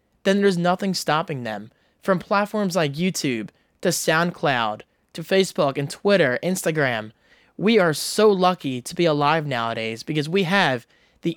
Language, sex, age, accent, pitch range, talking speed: English, male, 20-39, American, 130-175 Hz, 150 wpm